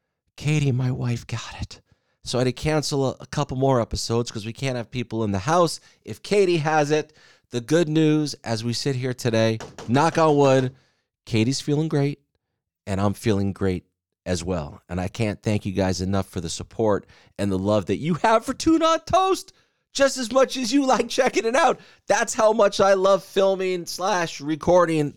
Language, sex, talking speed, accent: English, male, 200 wpm, American